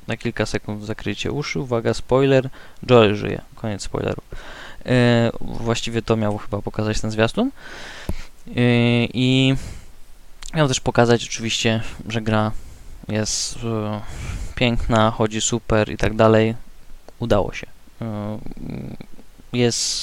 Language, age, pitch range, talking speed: Polish, 20-39, 105-120 Hz, 115 wpm